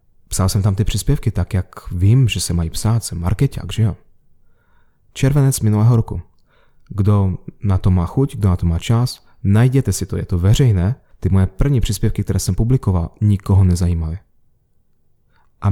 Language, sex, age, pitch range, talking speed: Slovak, male, 30-49, 95-125 Hz, 170 wpm